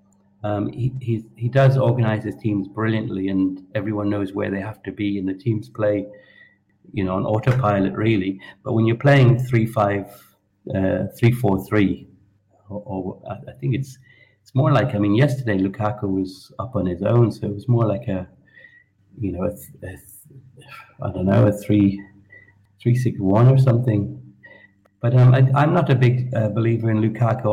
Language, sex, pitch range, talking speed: English, male, 100-125 Hz, 185 wpm